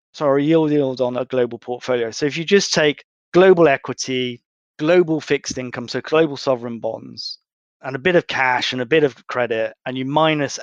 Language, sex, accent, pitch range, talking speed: English, male, British, 130-160 Hz, 190 wpm